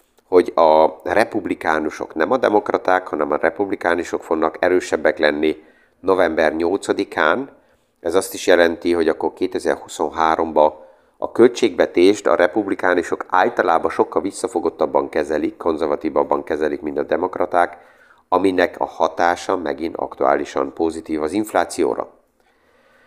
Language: Hungarian